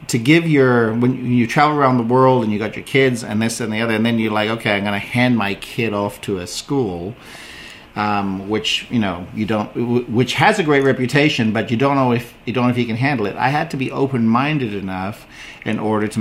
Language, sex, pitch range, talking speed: English, male, 105-130 Hz, 245 wpm